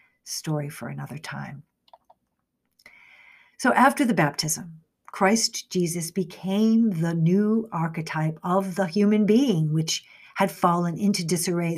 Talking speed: 115 wpm